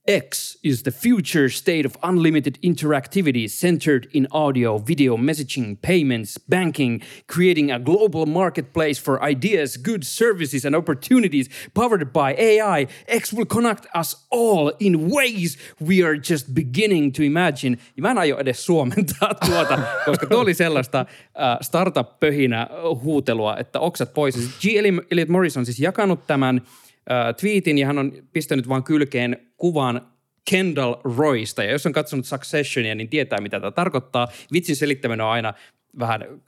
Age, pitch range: 30-49, 125-165 Hz